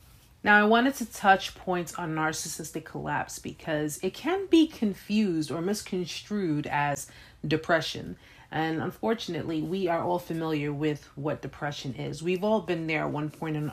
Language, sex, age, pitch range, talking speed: English, female, 30-49, 155-200 Hz, 155 wpm